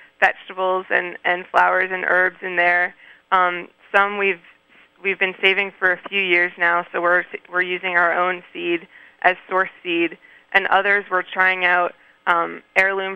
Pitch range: 175-190 Hz